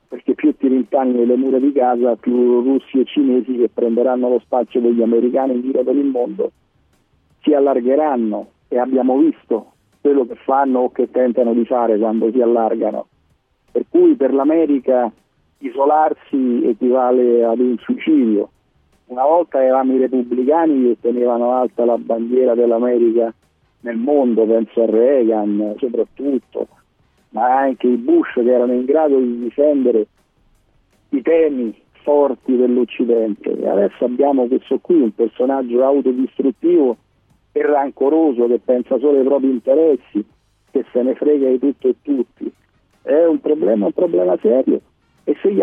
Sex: male